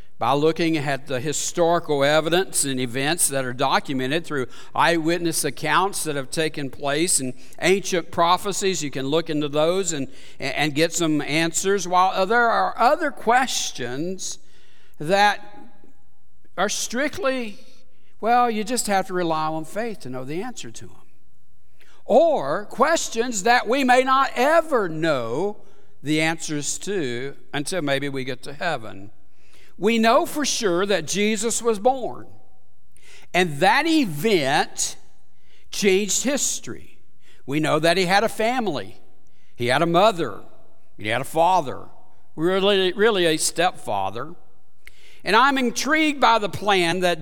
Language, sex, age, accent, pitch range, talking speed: English, male, 60-79, American, 145-210 Hz, 140 wpm